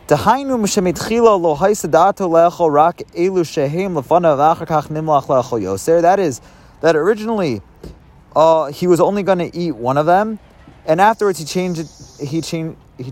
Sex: male